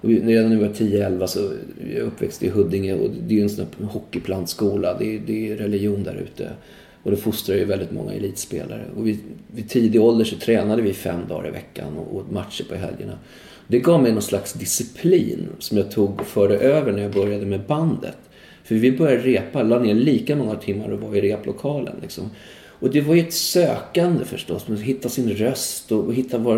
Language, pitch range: Swedish, 105-135 Hz